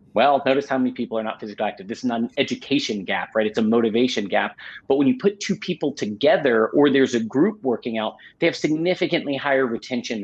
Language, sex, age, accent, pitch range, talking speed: English, male, 30-49, American, 115-140 Hz, 225 wpm